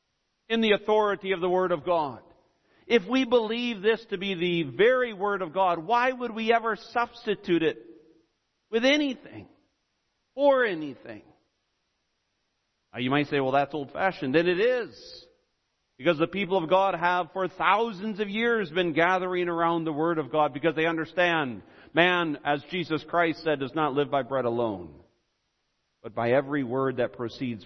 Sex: male